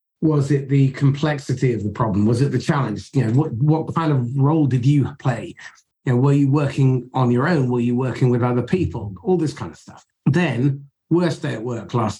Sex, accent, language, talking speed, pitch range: male, British, English, 225 wpm, 120-150 Hz